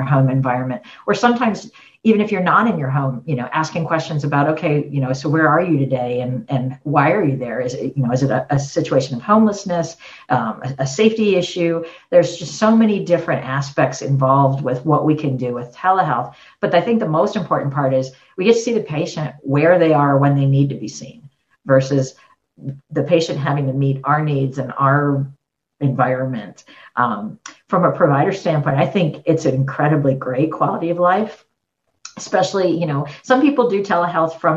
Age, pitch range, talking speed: 50-69, 135-165 Hz, 200 wpm